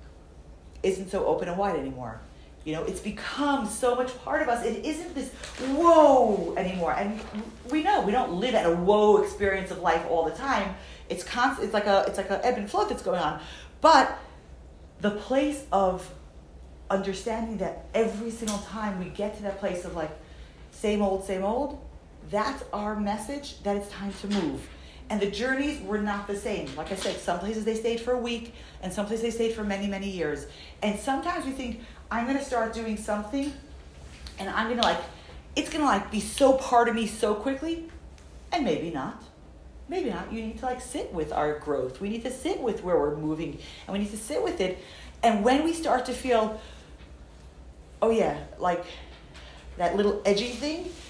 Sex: female